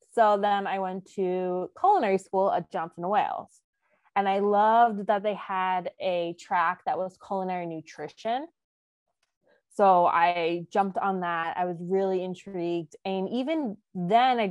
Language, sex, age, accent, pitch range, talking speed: English, female, 20-39, American, 180-230 Hz, 145 wpm